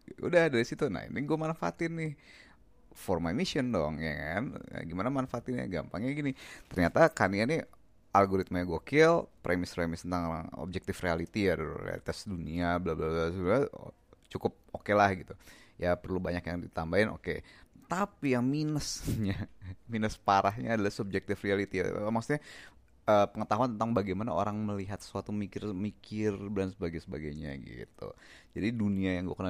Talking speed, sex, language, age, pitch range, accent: 140 wpm, male, Indonesian, 30-49, 85-110 Hz, native